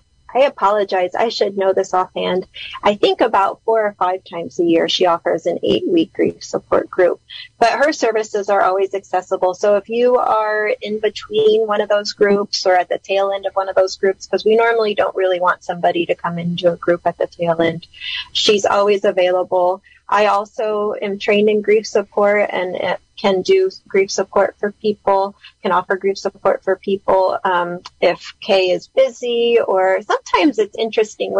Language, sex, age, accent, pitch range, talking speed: English, female, 30-49, American, 185-225 Hz, 185 wpm